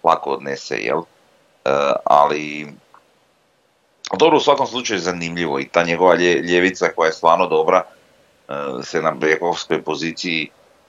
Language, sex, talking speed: Croatian, male, 130 wpm